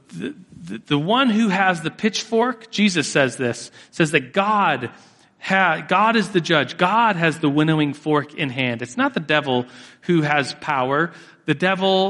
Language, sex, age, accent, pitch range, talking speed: English, male, 40-59, American, 145-185 Hz, 175 wpm